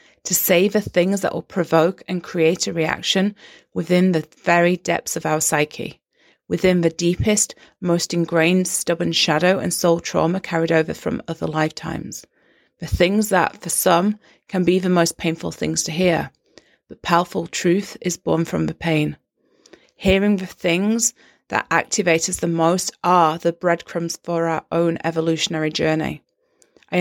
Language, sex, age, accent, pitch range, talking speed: English, female, 30-49, British, 165-185 Hz, 155 wpm